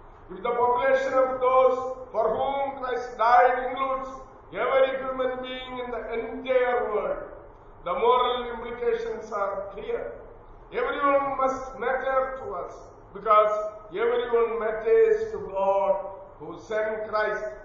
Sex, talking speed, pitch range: male, 120 wpm, 215-265 Hz